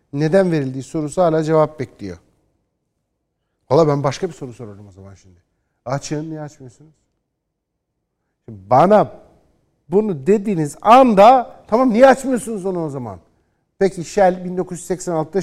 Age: 50-69